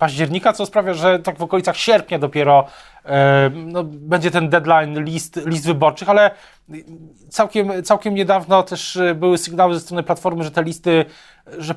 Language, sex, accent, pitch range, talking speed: Polish, male, native, 155-180 Hz, 160 wpm